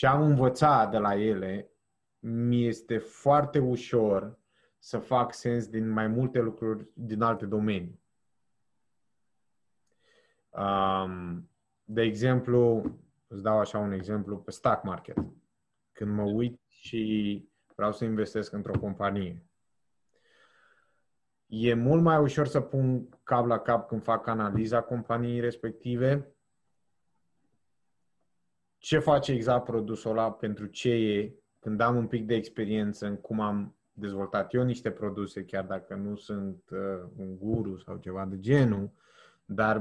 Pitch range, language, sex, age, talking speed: 105-125 Hz, Romanian, male, 20-39, 125 wpm